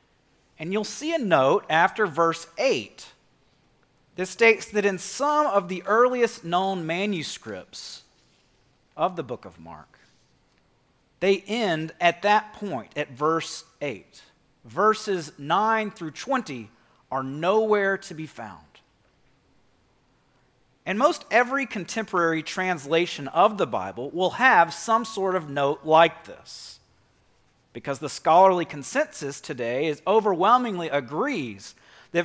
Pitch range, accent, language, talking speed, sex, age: 150-205 Hz, American, English, 120 wpm, male, 40-59